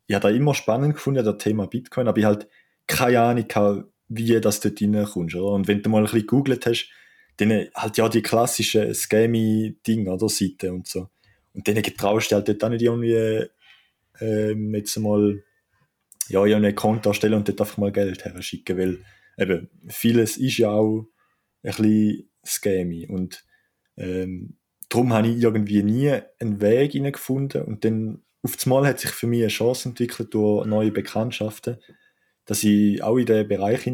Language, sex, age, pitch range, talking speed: English, male, 20-39, 100-120 Hz, 180 wpm